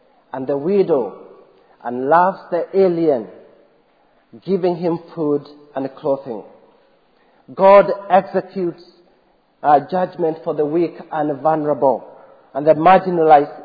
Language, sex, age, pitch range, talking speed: English, male, 40-59, 160-200 Hz, 105 wpm